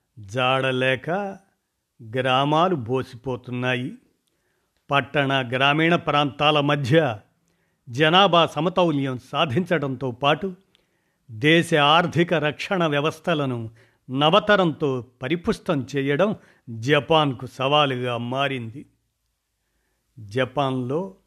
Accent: native